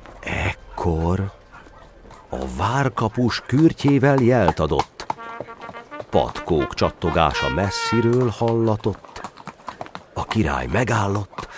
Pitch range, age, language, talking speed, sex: 80-115 Hz, 50-69, Hungarian, 65 wpm, male